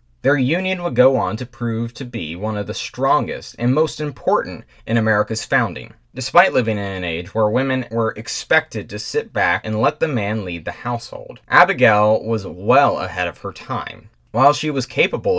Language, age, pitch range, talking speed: English, 20-39, 105-130 Hz, 190 wpm